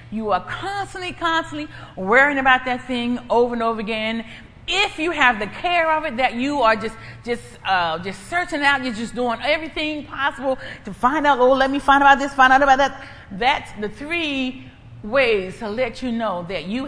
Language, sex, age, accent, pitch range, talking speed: English, female, 40-59, American, 205-285 Hz, 205 wpm